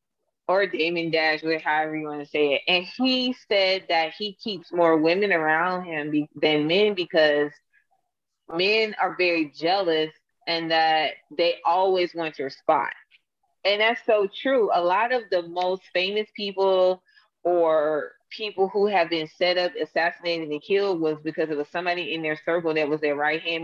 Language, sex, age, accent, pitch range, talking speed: English, female, 20-39, American, 160-205 Hz, 170 wpm